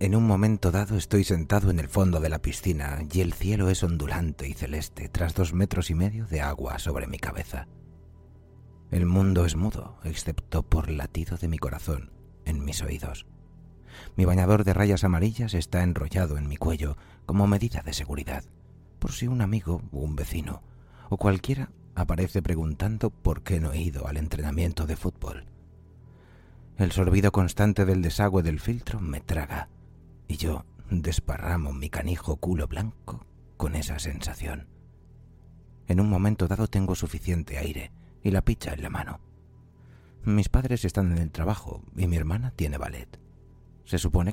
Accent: Spanish